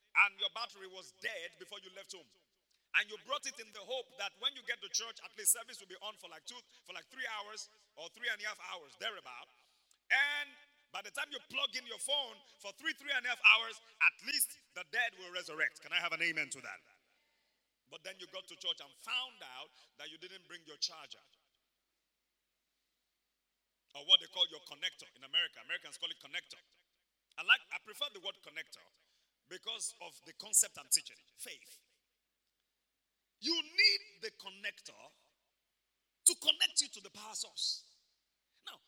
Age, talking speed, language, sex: 40-59, 190 wpm, English, male